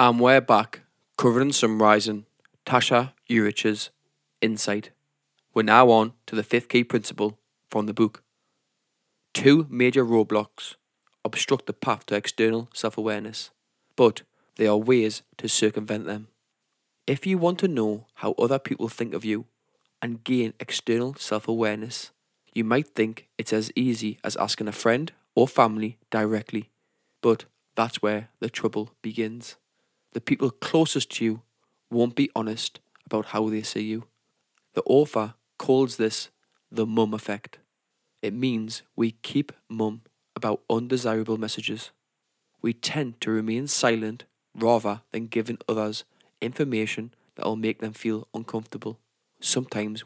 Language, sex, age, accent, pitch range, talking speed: English, male, 20-39, British, 110-120 Hz, 135 wpm